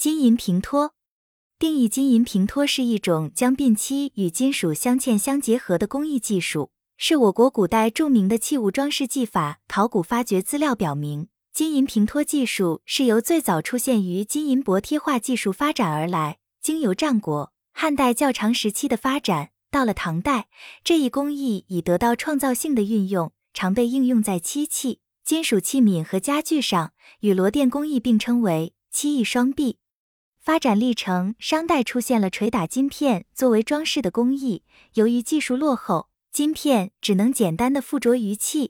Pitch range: 195-275 Hz